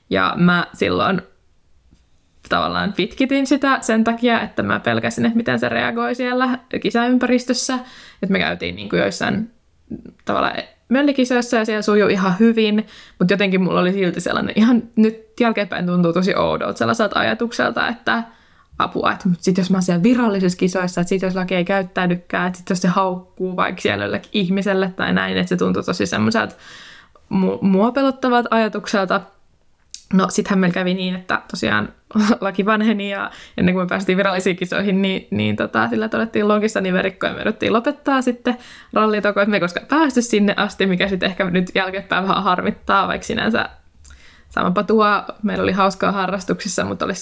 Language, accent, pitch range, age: Finnish, native, 180-220 Hz, 20-39